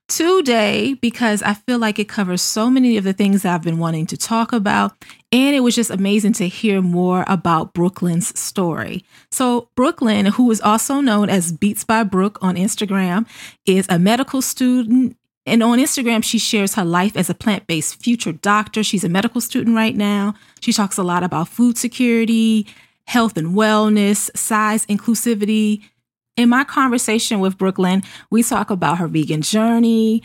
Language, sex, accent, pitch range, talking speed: English, female, American, 190-235 Hz, 170 wpm